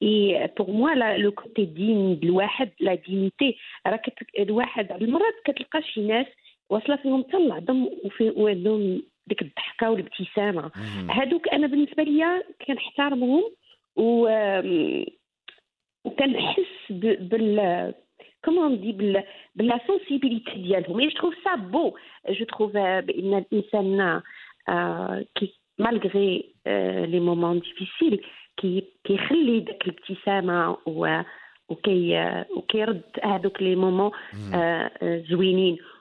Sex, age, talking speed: female, 40-59, 65 wpm